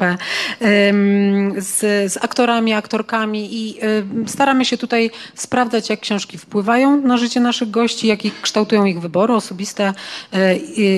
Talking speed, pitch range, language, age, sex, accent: 125 wpm, 180-220 Hz, Polish, 30-49, female, native